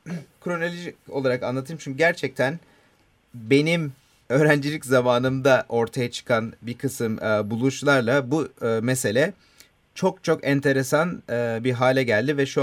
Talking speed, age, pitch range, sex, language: 110 wpm, 40-59, 115-140 Hz, male, Turkish